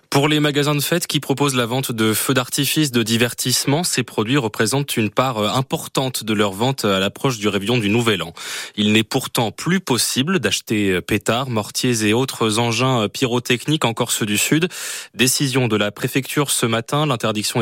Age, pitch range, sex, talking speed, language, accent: 20-39, 105-135 Hz, male, 180 wpm, French, French